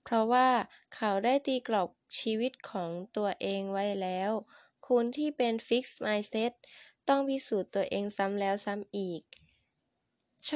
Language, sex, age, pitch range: Thai, female, 10-29, 190-245 Hz